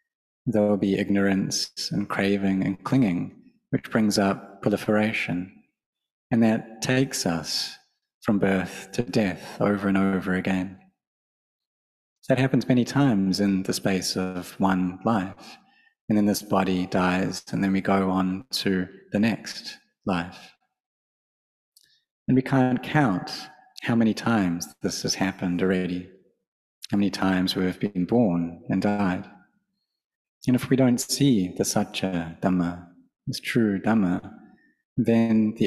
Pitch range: 95-115 Hz